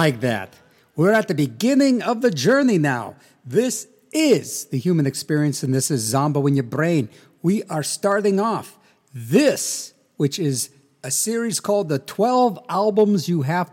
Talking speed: 160 wpm